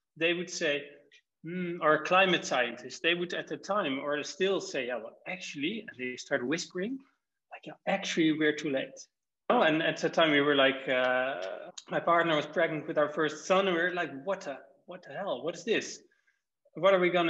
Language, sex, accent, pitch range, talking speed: English, male, Dutch, 145-190 Hz, 210 wpm